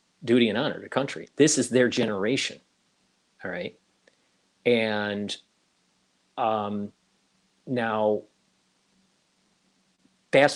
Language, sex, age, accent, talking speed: English, male, 40-59, American, 85 wpm